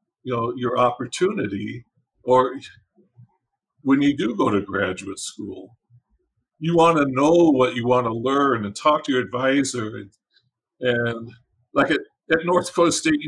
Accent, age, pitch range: American, 50-69, 125-160 Hz